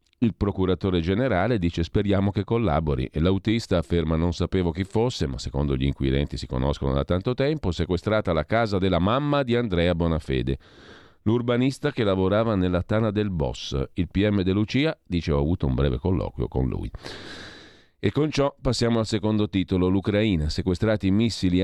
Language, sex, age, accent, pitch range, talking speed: Italian, male, 40-59, native, 85-110 Hz, 165 wpm